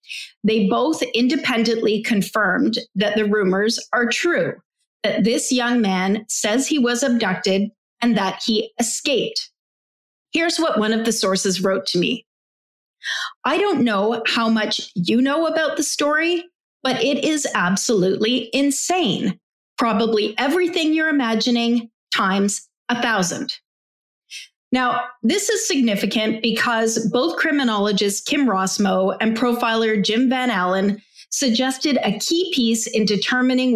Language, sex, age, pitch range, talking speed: English, female, 30-49, 210-265 Hz, 130 wpm